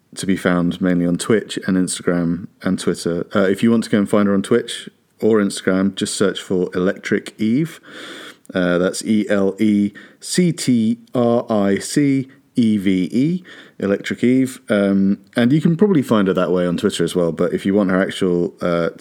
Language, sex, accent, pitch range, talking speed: English, male, British, 90-115 Hz, 165 wpm